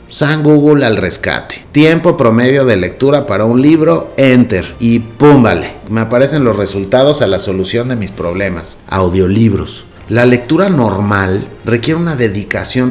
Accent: Mexican